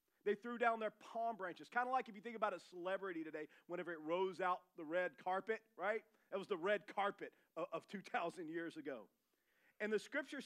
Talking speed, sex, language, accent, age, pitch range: 210 wpm, male, English, American, 40-59, 180-240 Hz